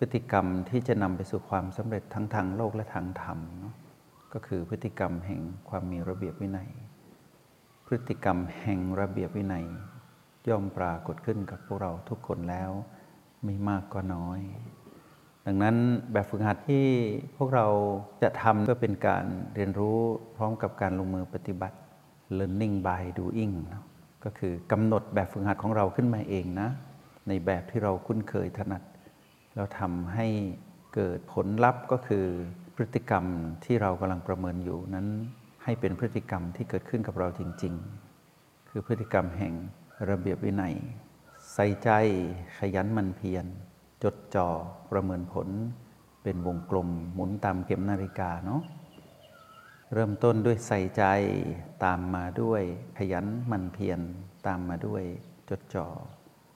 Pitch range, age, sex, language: 95-115 Hz, 60-79, male, Thai